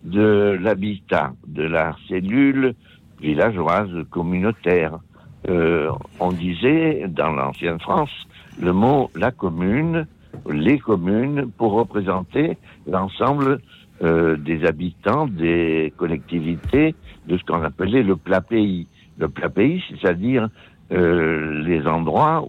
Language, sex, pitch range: French, male, 80-105 Hz